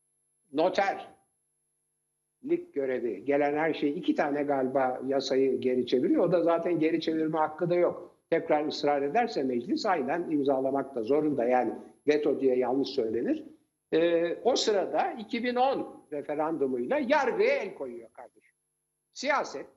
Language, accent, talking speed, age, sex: Turkish, native, 125 wpm, 60-79, male